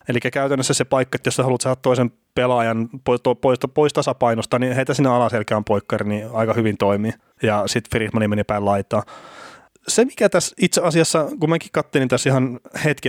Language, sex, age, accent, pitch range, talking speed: Finnish, male, 30-49, native, 115-165 Hz, 180 wpm